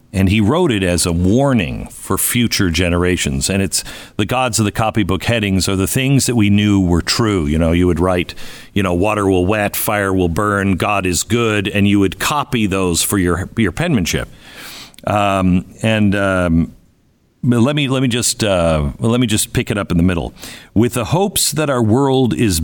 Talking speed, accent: 205 wpm, American